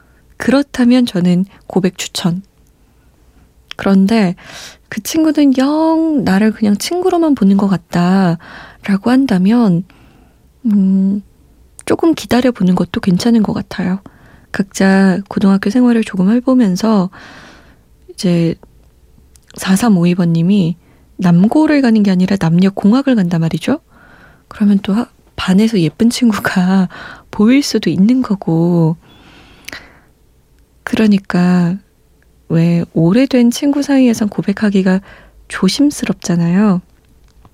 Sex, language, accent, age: female, Korean, native, 20-39